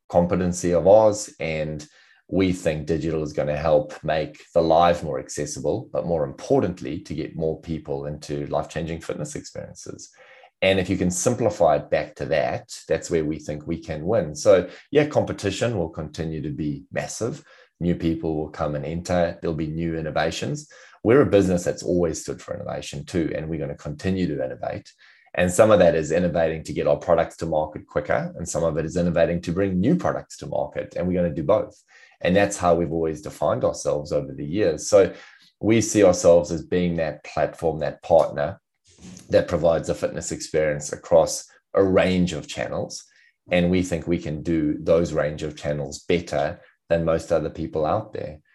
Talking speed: 190 wpm